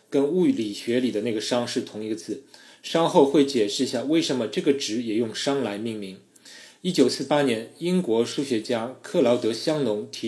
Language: Chinese